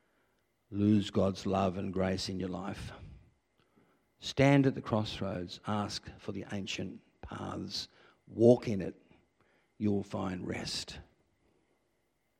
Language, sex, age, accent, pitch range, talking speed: English, male, 60-79, Australian, 95-125 Hz, 110 wpm